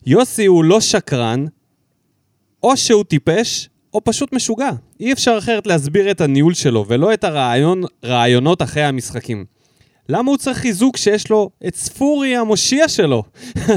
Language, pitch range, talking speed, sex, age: Hebrew, 140-205 Hz, 140 wpm, male, 20-39